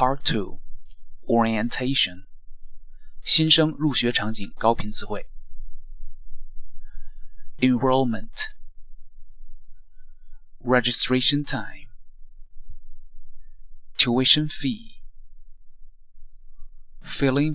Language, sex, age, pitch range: Chinese, male, 30-49, 95-130 Hz